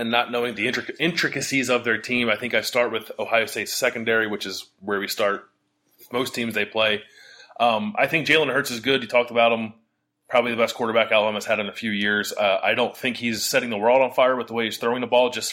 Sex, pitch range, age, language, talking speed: male, 105-120 Hz, 20-39, English, 245 wpm